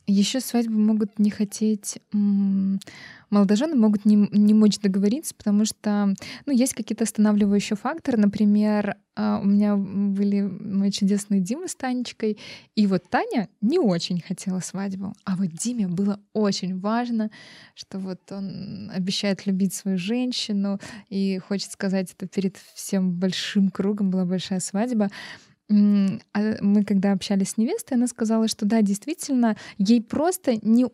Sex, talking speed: female, 140 wpm